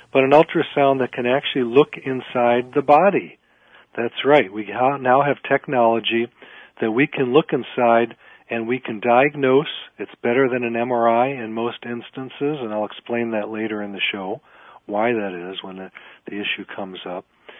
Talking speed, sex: 170 wpm, male